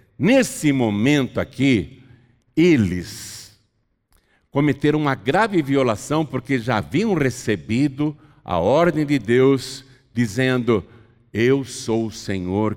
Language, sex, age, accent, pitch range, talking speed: Portuguese, male, 60-79, Brazilian, 115-165 Hz, 100 wpm